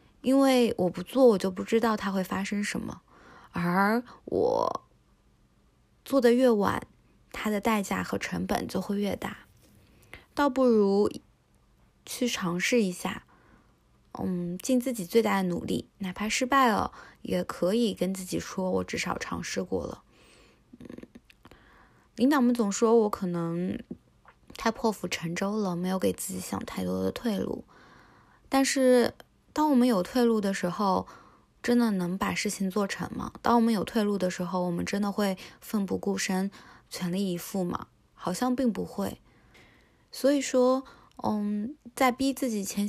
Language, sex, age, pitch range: Chinese, female, 20-39, 190-245 Hz